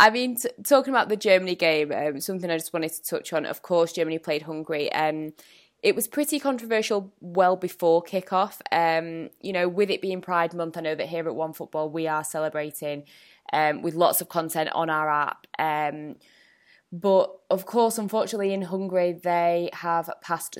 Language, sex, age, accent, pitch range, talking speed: English, female, 20-39, British, 155-185 Hz, 190 wpm